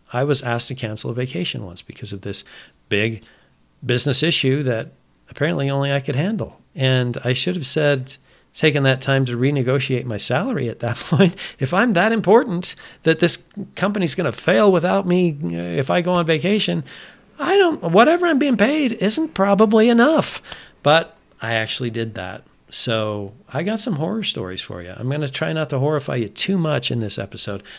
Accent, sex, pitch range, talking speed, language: American, male, 115-165 Hz, 185 wpm, English